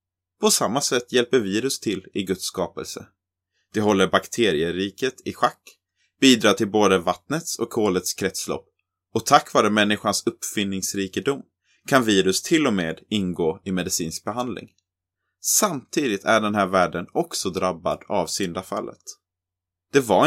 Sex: male